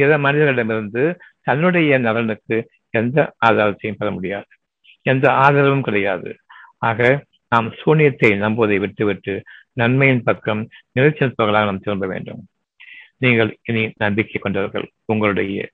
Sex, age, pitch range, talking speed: male, 60-79, 110-140 Hz, 40 wpm